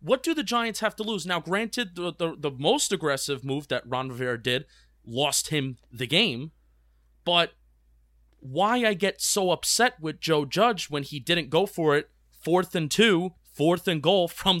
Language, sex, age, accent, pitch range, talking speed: English, male, 30-49, American, 150-215 Hz, 185 wpm